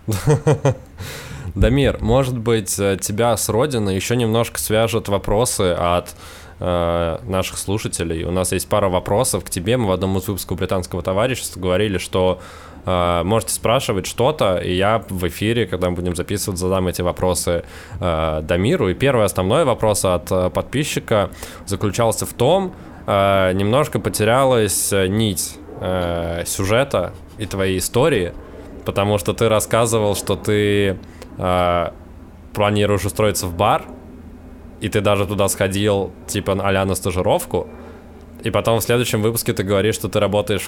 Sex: male